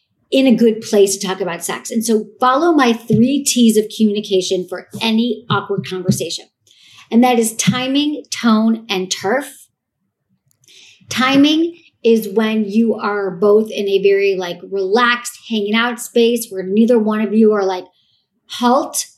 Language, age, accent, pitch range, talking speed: English, 40-59, American, 200-245 Hz, 155 wpm